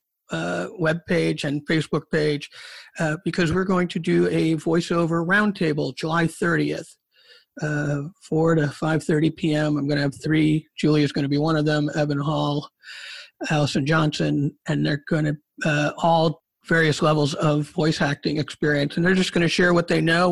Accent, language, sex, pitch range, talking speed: American, English, male, 145-170 Hz, 175 wpm